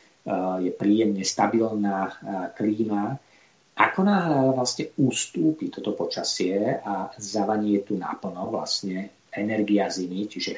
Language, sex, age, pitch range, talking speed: Slovak, male, 50-69, 105-135 Hz, 110 wpm